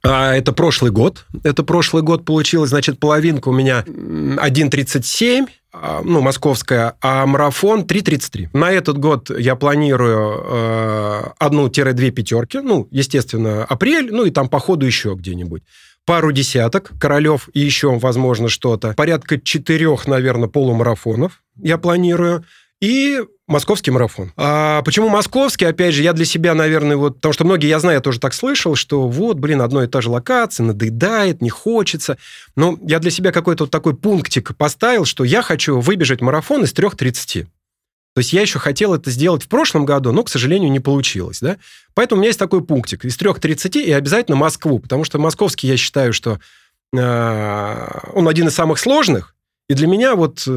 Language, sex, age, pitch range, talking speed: Russian, male, 20-39, 130-170 Hz, 165 wpm